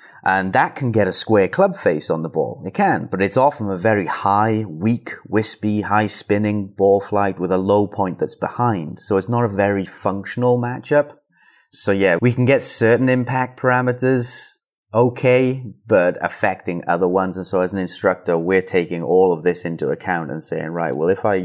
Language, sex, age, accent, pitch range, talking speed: English, male, 30-49, British, 95-115 Hz, 190 wpm